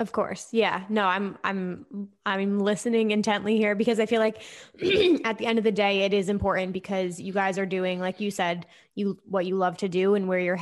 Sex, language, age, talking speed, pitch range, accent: female, English, 20-39, 225 wpm, 180-205 Hz, American